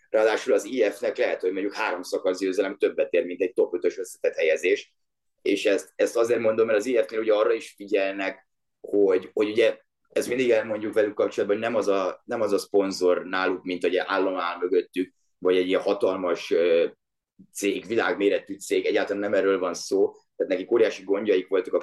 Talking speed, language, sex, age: 185 wpm, Hungarian, male, 30-49